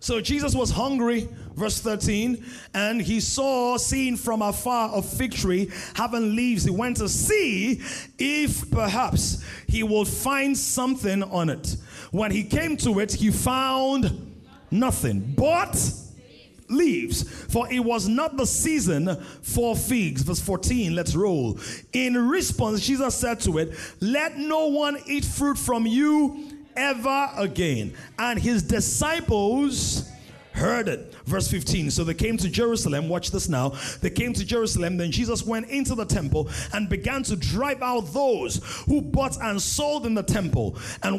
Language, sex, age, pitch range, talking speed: English, male, 30-49, 200-270 Hz, 155 wpm